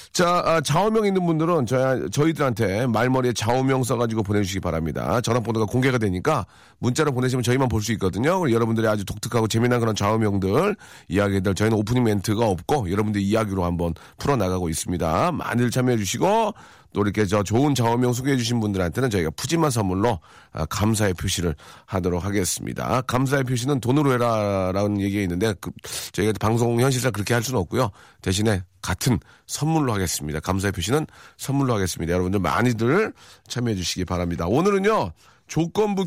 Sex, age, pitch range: male, 40-59, 100-140 Hz